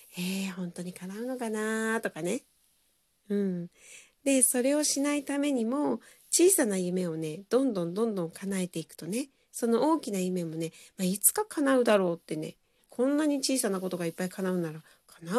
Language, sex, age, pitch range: Japanese, female, 40-59, 170-240 Hz